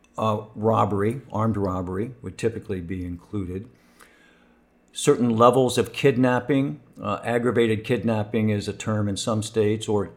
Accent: American